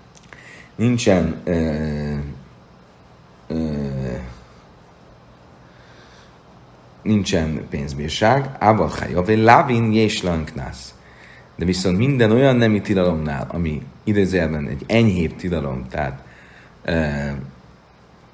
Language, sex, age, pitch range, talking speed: Hungarian, male, 40-59, 75-110 Hz, 70 wpm